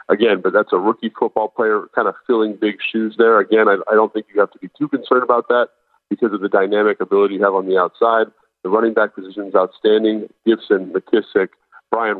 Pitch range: 105-125 Hz